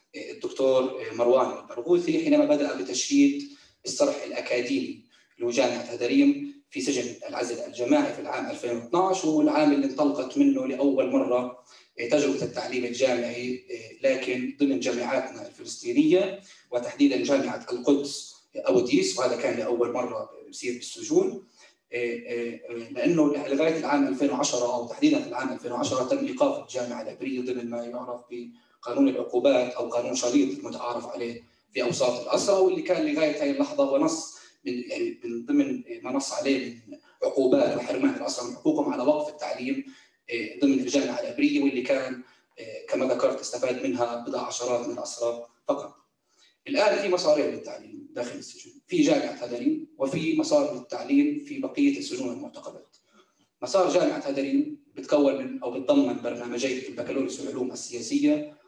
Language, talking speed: English, 120 wpm